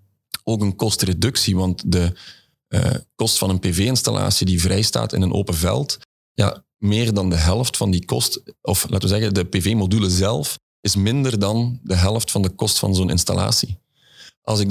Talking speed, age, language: 185 wpm, 40-59, Dutch